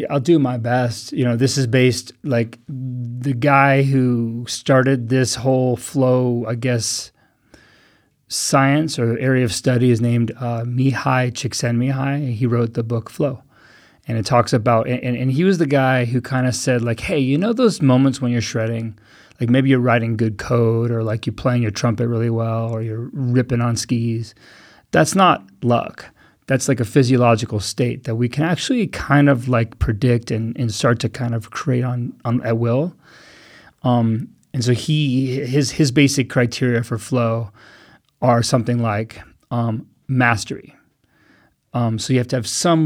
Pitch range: 115-130 Hz